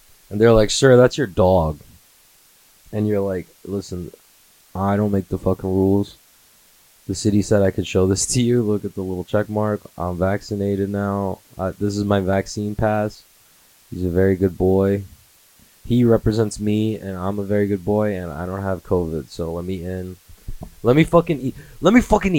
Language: English